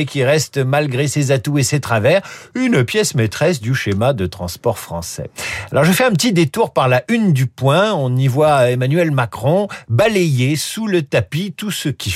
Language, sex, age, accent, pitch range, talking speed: French, male, 50-69, French, 130-185 Hz, 190 wpm